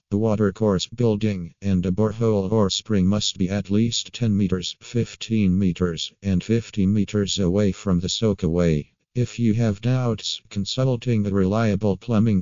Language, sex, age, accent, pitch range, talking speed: English, male, 50-69, American, 95-110 Hz, 160 wpm